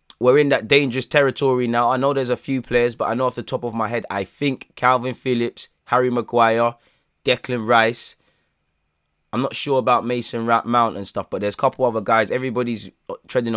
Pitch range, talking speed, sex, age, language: 100-125 Hz, 205 wpm, male, 20-39, English